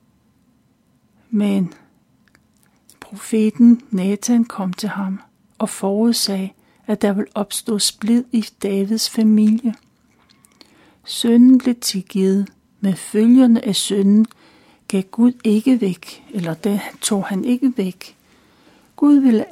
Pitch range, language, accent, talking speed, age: 205-240 Hz, Danish, native, 110 wpm, 60-79